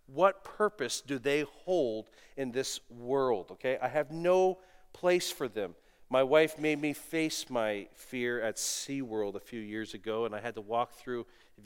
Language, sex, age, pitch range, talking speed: English, male, 40-59, 125-180 Hz, 185 wpm